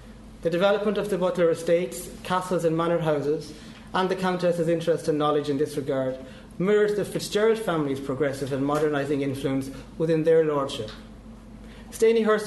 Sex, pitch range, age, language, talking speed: male, 150-185 Hz, 30-49, English, 150 wpm